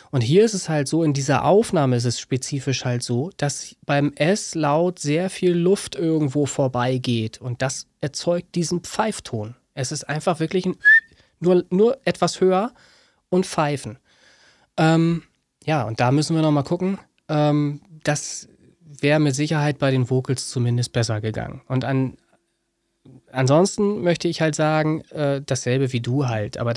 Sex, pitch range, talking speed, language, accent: male, 130-160 Hz, 150 wpm, German, German